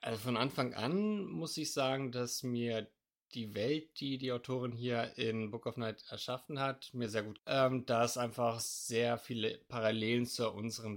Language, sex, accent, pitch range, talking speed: German, male, German, 110-135 Hz, 180 wpm